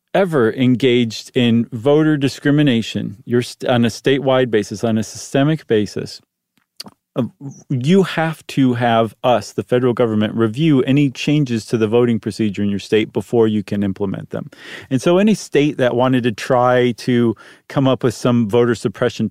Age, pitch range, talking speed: 40-59, 110-140 Hz, 165 wpm